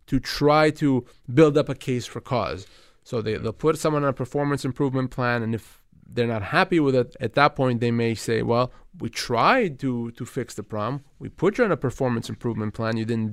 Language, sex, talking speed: English, male, 225 wpm